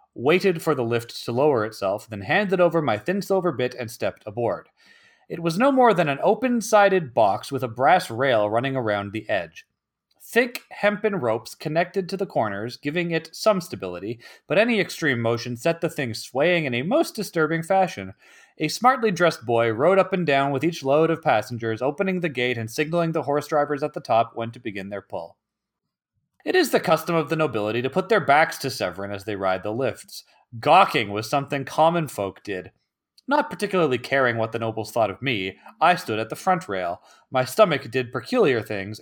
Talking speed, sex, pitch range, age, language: 200 wpm, male, 115-185 Hz, 30-49, English